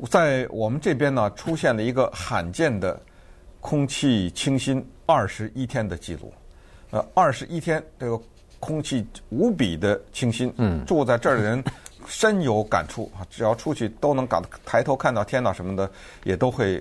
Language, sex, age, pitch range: Chinese, male, 50-69, 90-135 Hz